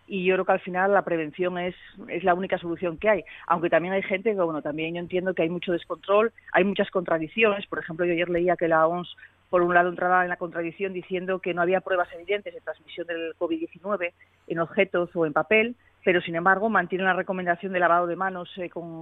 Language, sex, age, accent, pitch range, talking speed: Spanish, female, 40-59, Spanish, 165-190 Hz, 225 wpm